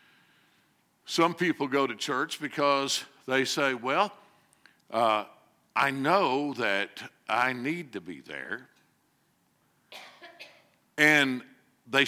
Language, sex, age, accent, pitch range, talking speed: English, male, 60-79, American, 130-180 Hz, 100 wpm